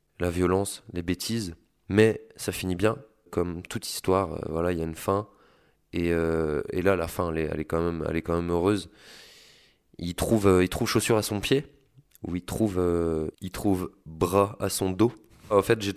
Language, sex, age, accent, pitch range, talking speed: French, male, 20-39, French, 85-100 Hz, 210 wpm